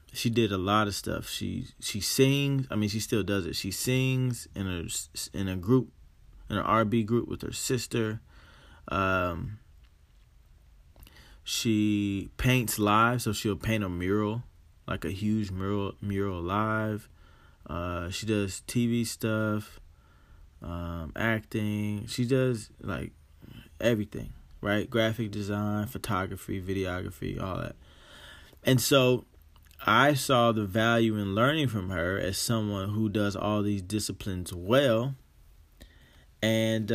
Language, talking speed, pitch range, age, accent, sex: English, 130 wpm, 95-120 Hz, 20-39, American, male